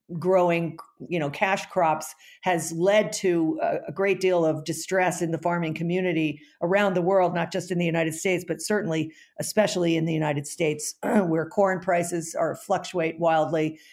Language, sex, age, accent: English, female, 50-69, American